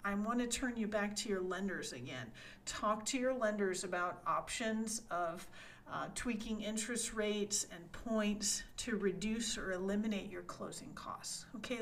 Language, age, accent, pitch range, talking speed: English, 50-69, American, 200-265 Hz, 155 wpm